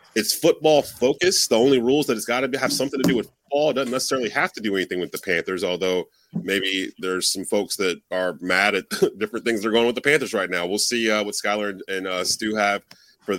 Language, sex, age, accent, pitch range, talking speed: English, male, 30-49, American, 100-120 Hz, 245 wpm